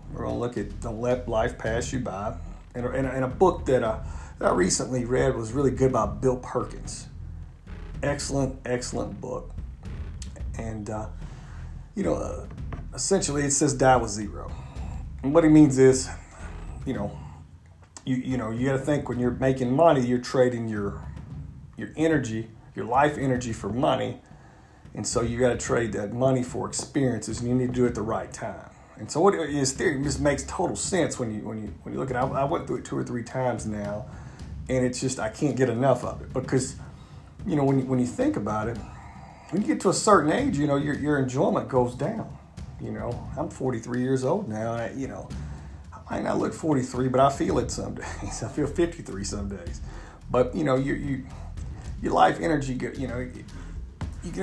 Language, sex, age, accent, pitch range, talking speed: English, male, 40-59, American, 100-135 Hz, 210 wpm